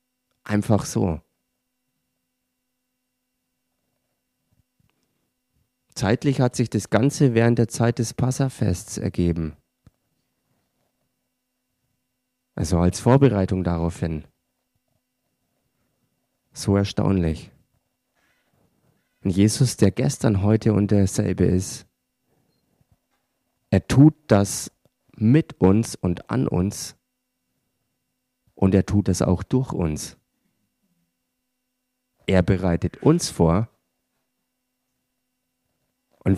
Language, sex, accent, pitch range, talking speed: German, male, German, 95-125 Hz, 80 wpm